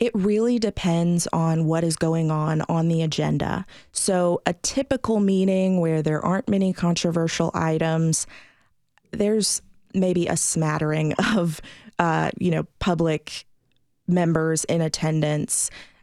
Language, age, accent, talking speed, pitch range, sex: English, 20-39, American, 125 wpm, 160-175 Hz, female